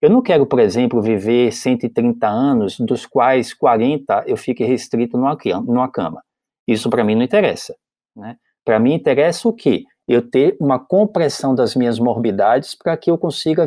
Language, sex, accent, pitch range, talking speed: Portuguese, male, Brazilian, 125-185 Hz, 165 wpm